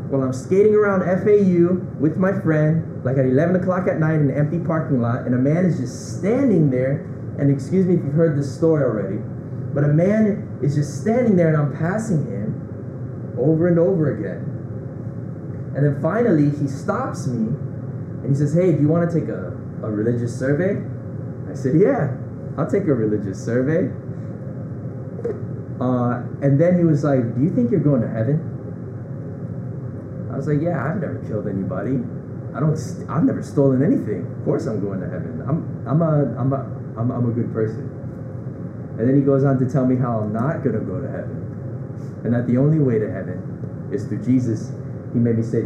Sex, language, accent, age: male, English, American, 20-39